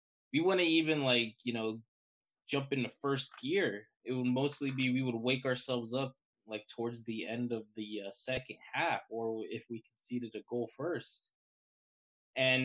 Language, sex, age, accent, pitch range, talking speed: English, male, 20-39, American, 110-135 Hz, 170 wpm